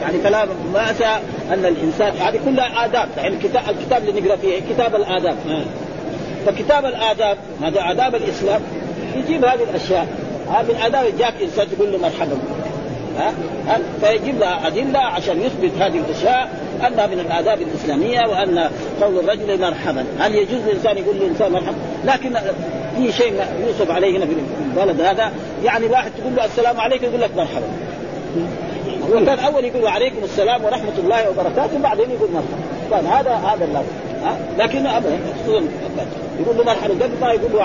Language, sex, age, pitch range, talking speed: Arabic, male, 40-59, 190-255 Hz, 150 wpm